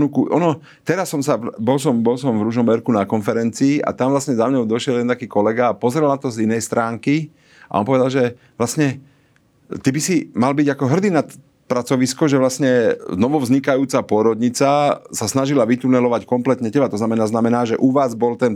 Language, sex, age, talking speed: Slovak, male, 40-59, 190 wpm